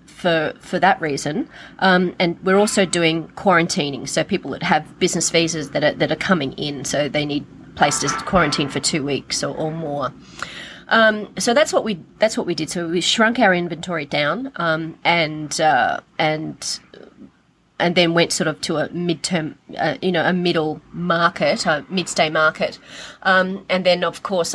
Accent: Australian